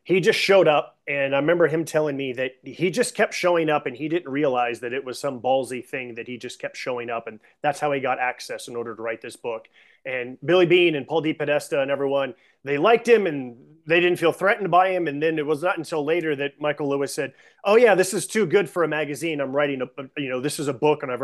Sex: male